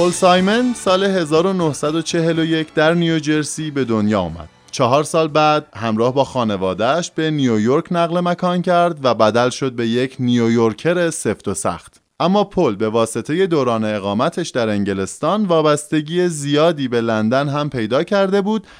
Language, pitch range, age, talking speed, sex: Persian, 110-165 Hz, 20-39, 145 wpm, male